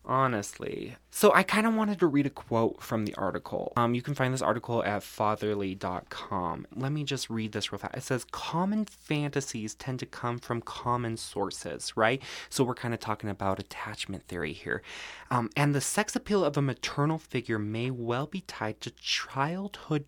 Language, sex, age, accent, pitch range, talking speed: English, male, 20-39, American, 105-140 Hz, 190 wpm